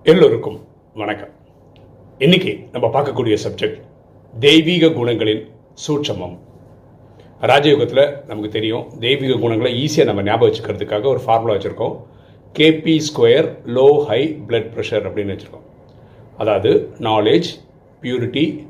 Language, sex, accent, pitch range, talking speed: Tamil, male, native, 125-195 Hz, 105 wpm